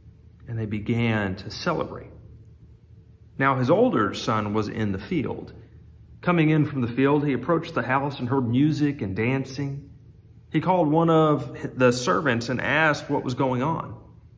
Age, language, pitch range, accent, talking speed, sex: 40-59, English, 110-150 Hz, American, 165 wpm, male